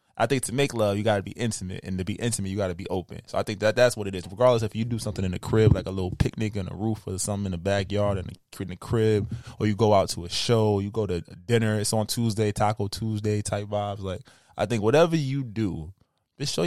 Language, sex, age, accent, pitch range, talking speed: English, male, 20-39, American, 105-160 Hz, 270 wpm